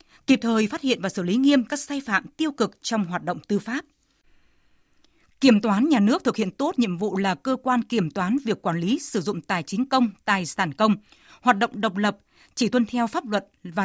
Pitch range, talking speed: 195-260 Hz, 230 wpm